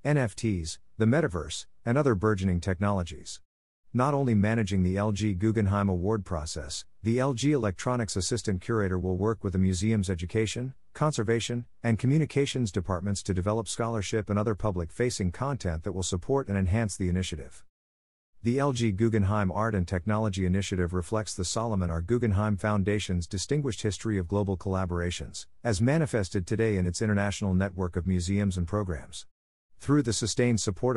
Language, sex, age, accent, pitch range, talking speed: English, male, 50-69, American, 90-115 Hz, 150 wpm